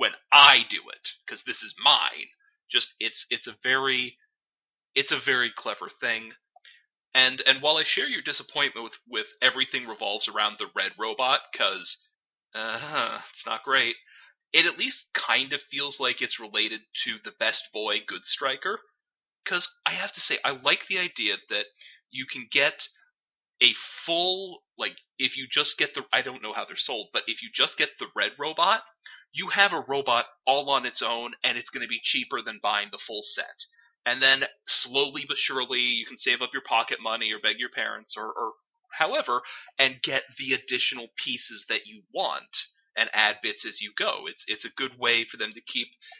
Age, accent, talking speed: 30-49, American, 195 wpm